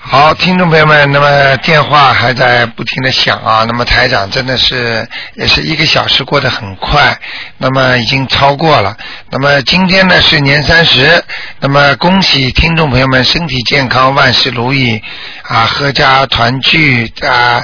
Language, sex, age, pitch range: Chinese, male, 50-69, 125-155 Hz